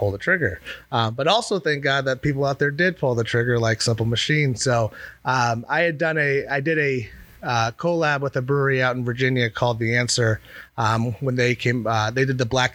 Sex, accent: male, American